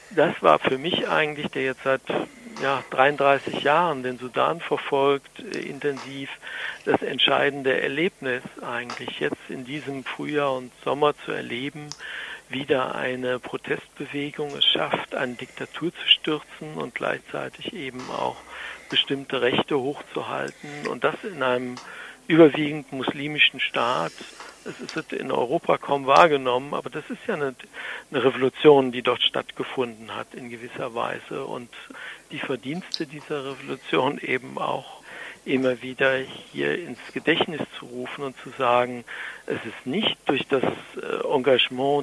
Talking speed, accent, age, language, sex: 130 wpm, German, 60-79, German, male